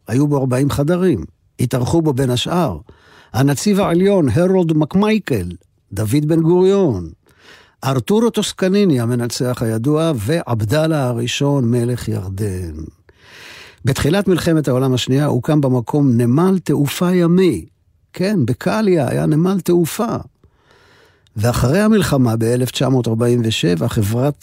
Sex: male